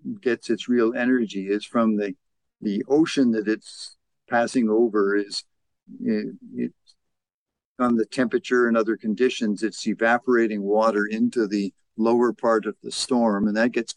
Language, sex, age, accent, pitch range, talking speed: English, male, 50-69, American, 105-125 Hz, 150 wpm